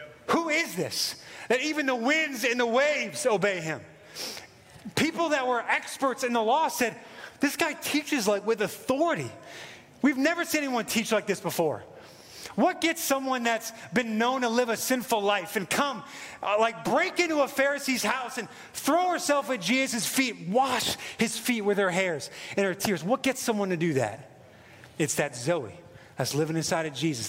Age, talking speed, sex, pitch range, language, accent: 30-49, 185 wpm, male, 155-250 Hz, English, American